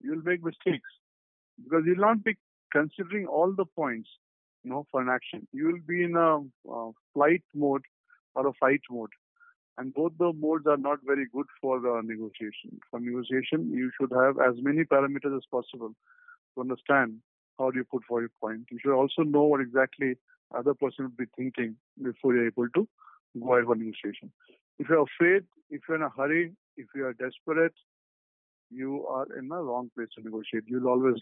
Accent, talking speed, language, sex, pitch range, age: Indian, 185 wpm, English, male, 120-155 Hz, 50-69